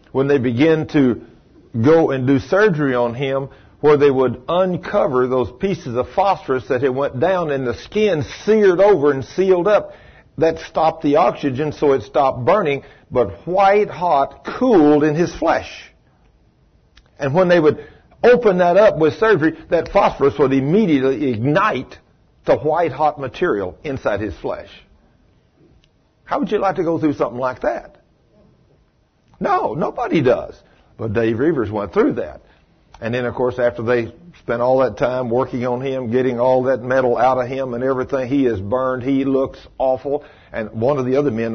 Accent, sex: American, male